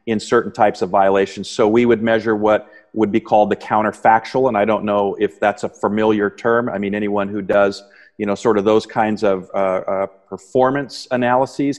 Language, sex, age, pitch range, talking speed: English, male, 40-59, 105-120 Hz, 205 wpm